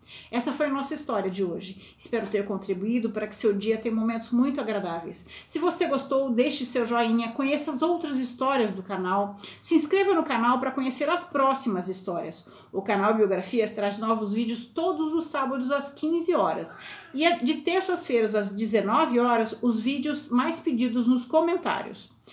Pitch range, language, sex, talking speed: 220-275 Hz, Portuguese, female, 170 wpm